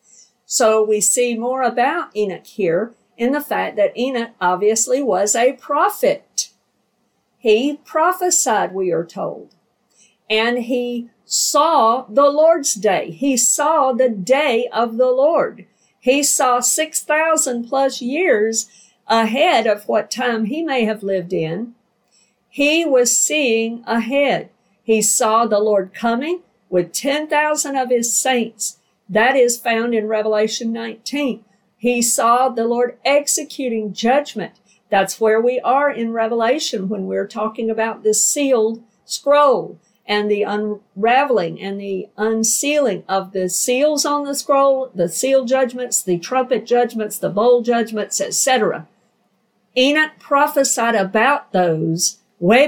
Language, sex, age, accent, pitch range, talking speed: English, female, 50-69, American, 215-270 Hz, 130 wpm